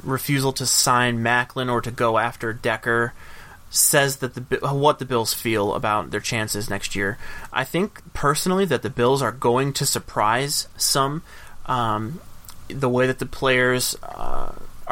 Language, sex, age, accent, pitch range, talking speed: English, male, 30-49, American, 115-135 Hz, 155 wpm